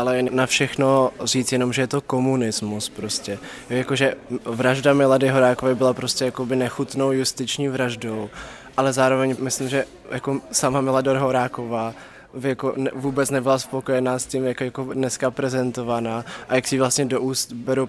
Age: 20-39